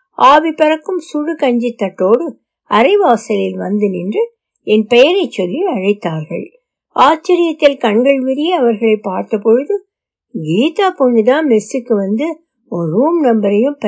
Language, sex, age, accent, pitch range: Tamil, female, 60-79, native, 215-310 Hz